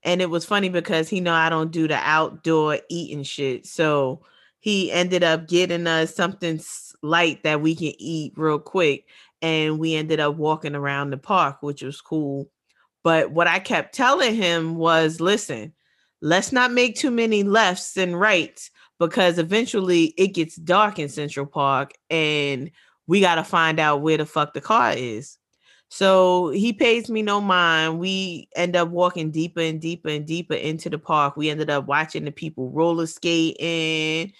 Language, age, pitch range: English, 20-39, 160-195 Hz